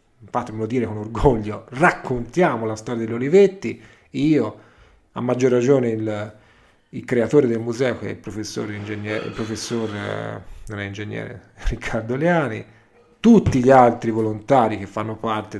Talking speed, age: 140 wpm, 40-59